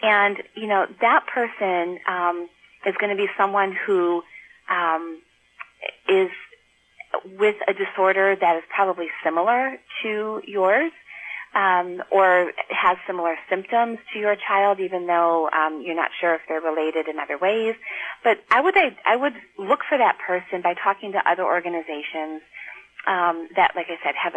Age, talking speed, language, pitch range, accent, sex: 30-49, 160 wpm, English, 165-205 Hz, American, female